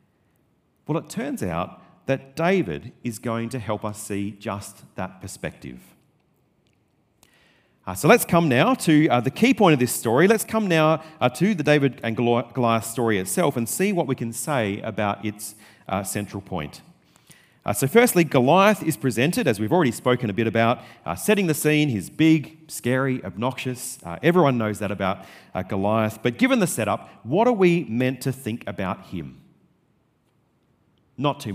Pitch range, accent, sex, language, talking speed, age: 105-155 Hz, Australian, male, English, 175 wpm, 40-59